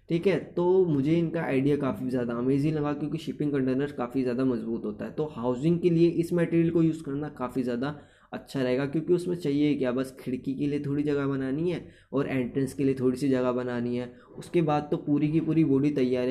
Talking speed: 220 wpm